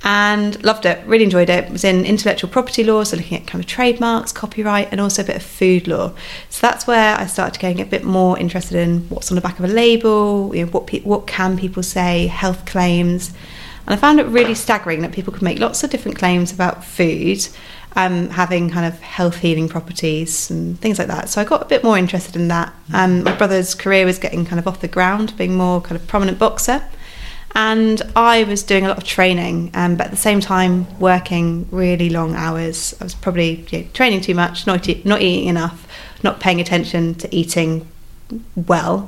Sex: female